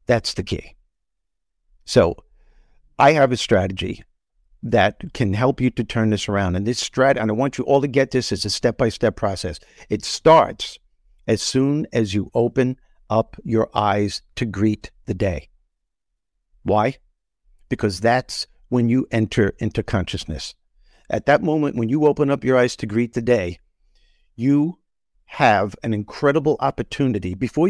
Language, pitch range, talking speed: English, 105-140 Hz, 160 wpm